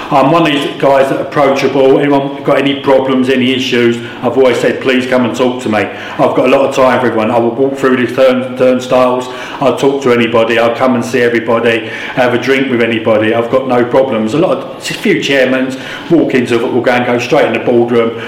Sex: male